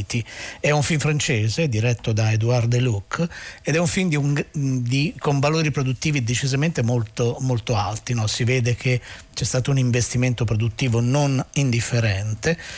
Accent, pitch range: native, 115-140 Hz